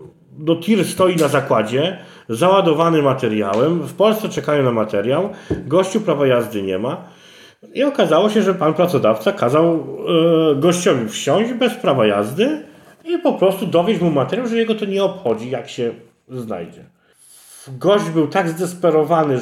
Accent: native